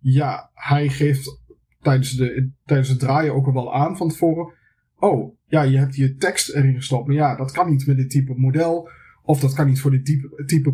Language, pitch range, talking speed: Dutch, 135-160 Hz, 220 wpm